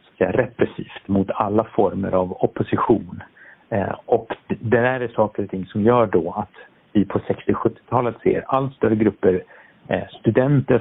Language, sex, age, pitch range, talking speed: Swedish, male, 50-69, 95-115 Hz, 155 wpm